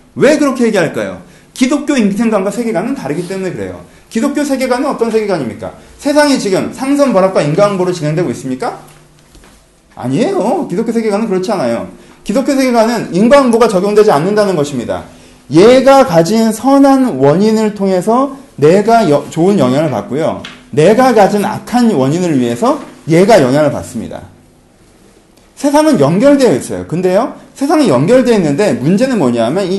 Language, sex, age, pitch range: Korean, male, 30-49, 180-255 Hz